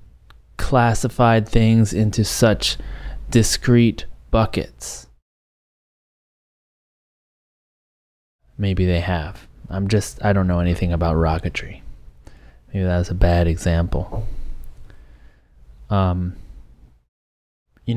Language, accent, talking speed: English, American, 80 wpm